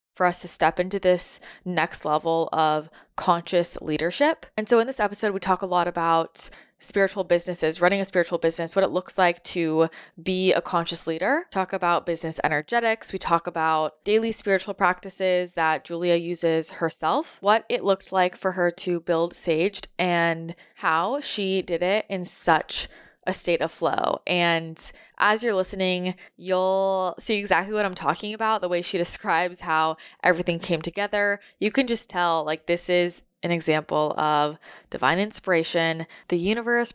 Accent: American